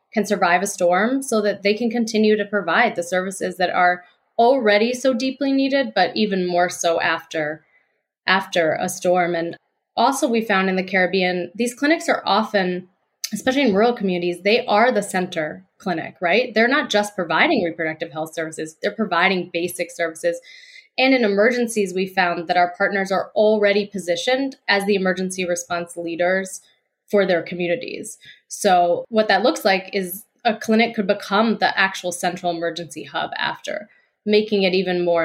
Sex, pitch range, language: female, 175-215 Hz, English